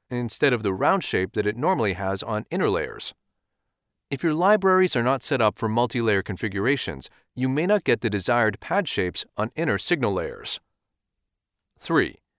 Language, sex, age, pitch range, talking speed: English, male, 40-59, 100-145 Hz, 170 wpm